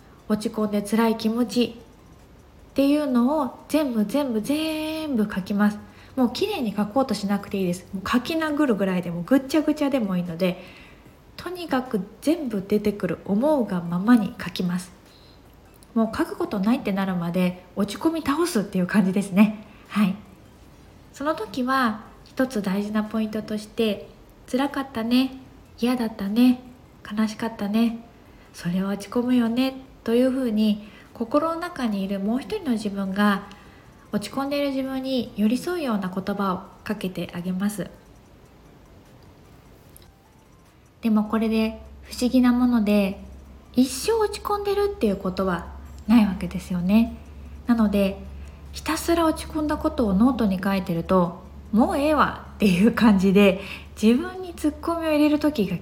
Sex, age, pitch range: female, 20-39, 200-265 Hz